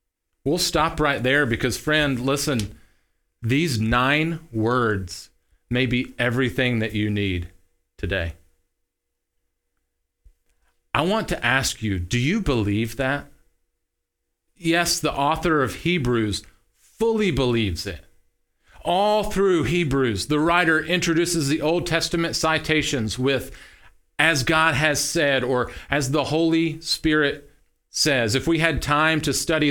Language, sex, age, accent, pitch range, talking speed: English, male, 40-59, American, 110-155 Hz, 125 wpm